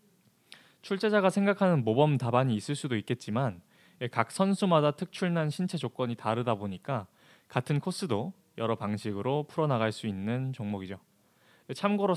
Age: 20-39